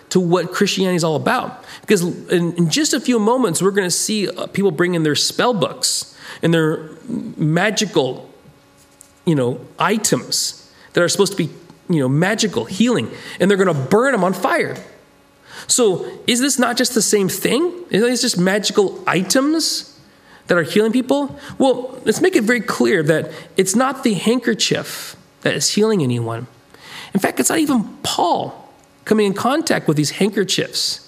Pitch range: 160-230 Hz